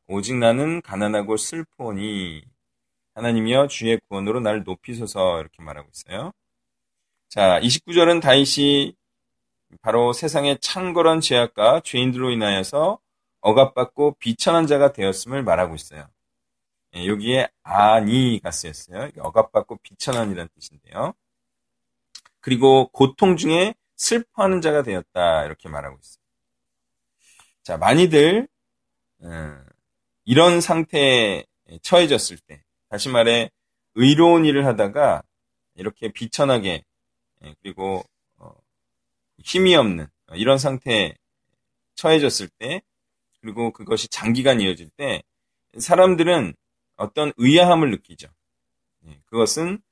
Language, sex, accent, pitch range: Korean, male, native, 95-155 Hz